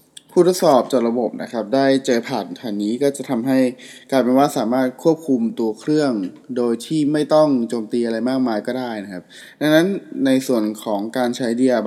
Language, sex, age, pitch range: Thai, male, 20-39, 110-140 Hz